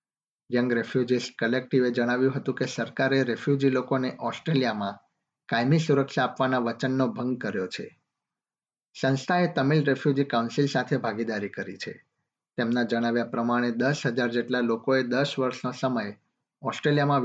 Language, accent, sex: Gujarati, native, male